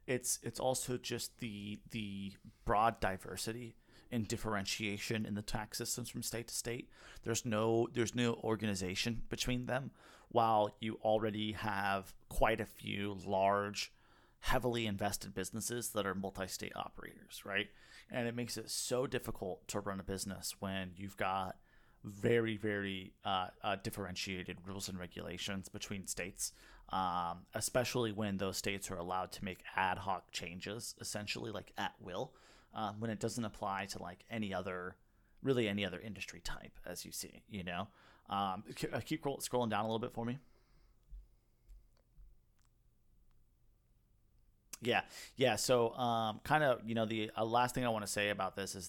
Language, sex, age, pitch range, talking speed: English, male, 30-49, 100-115 Hz, 160 wpm